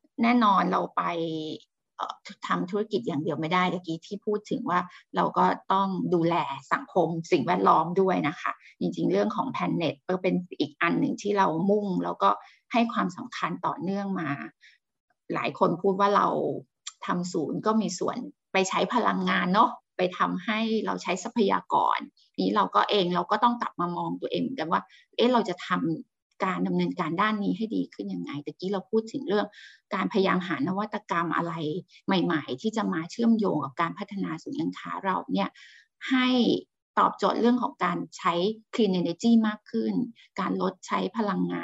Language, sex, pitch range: English, female, 170-225 Hz